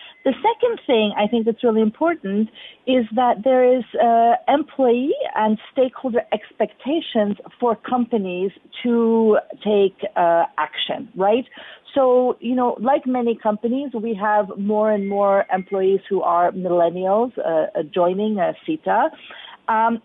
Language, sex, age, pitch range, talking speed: English, female, 40-59, 200-250 Hz, 130 wpm